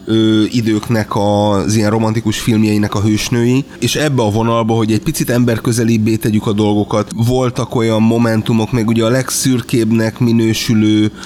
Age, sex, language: 30-49, male, Hungarian